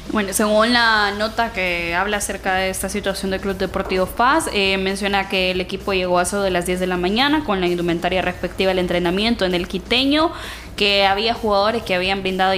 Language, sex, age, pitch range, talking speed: Spanish, female, 10-29, 185-230 Hz, 200 wpm